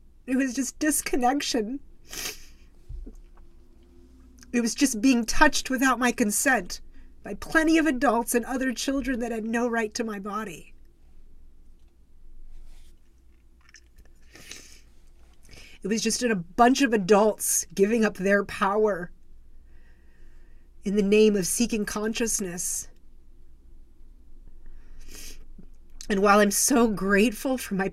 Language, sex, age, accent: English, female, 40-59, American